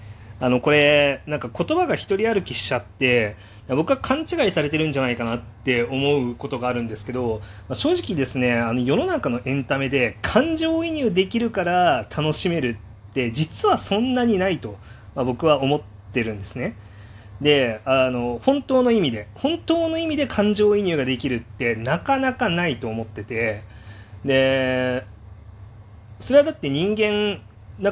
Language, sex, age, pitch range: Japanese, male, 30-49, 105-160 Hz